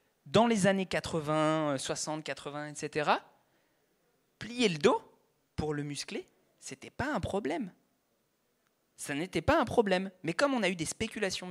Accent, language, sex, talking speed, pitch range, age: French, French, male, 155 wpm, 155-220 Hz, 20-39